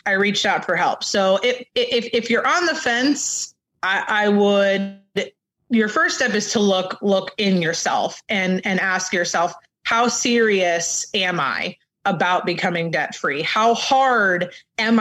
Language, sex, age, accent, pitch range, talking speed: English, female, 20-39, American, 185-220 Hz, 155 wpm